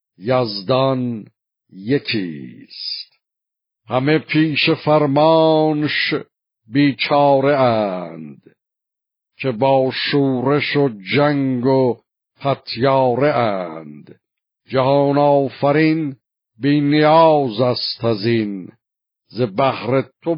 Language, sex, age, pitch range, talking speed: Persian, male, 60-79, 120-140 Hz, 70 wpm